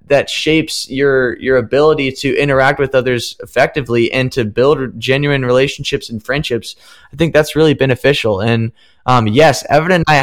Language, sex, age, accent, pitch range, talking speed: English, male, 20-39, American, 130-155 Hz, 165 wpm